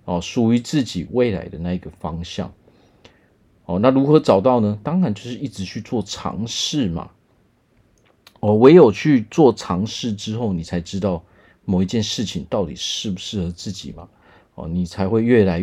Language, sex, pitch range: Chinese, male, 90-115 Hz